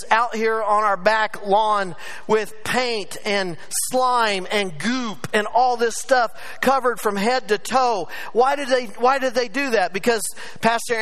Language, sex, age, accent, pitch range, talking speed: English, male, 40-59, American, 220-255 Hz, 170 wpm